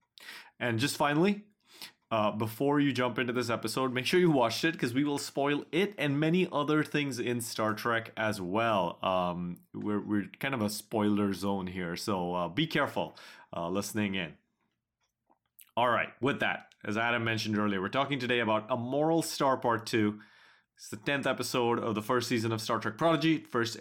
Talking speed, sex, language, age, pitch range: 190 wpm, male, English, 30-49, 110-145 Hz